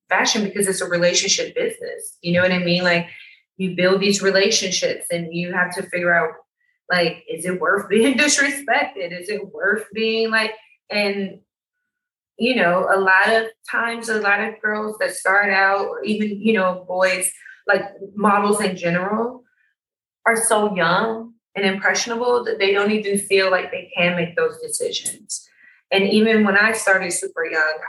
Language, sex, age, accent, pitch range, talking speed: English, female, 20-39, American, 175-225 Hz, 170 wpm